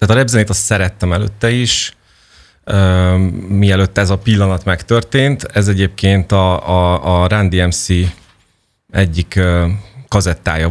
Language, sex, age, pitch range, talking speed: Hungarian, male, 30-49, 90-105 Hz, 130 wpm